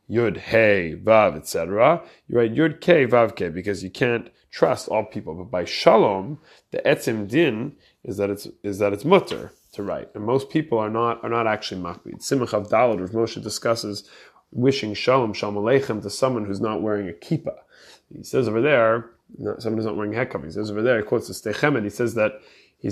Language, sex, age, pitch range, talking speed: English, male, 30-49, 105-130 Hz, 210 wpm